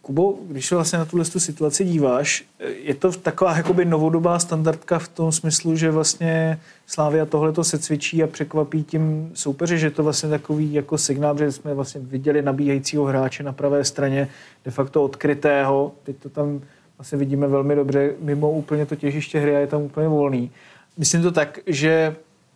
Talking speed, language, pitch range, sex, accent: 175 wpm, Czech, 145-165 Hz, male, native